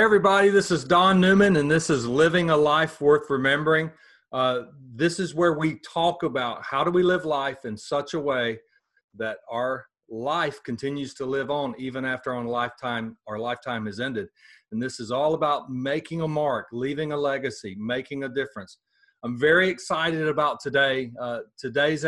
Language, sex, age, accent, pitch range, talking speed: English, male, 40-59, American, 130-170 Hz, 175 wpm